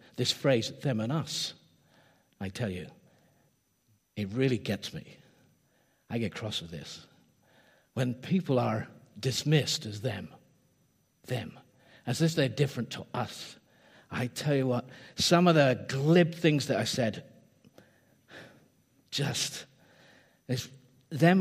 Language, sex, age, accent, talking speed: English, male, 50-69, British, 125 wpm